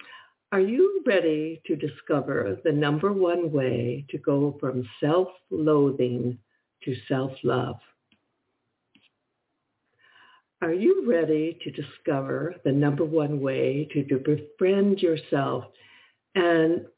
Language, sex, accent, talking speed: English, female, American, 100 wpm